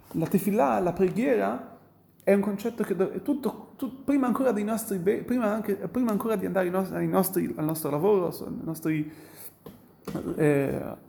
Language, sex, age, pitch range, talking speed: Italian, male, 30-49, 170-215 Hz, 170 wpm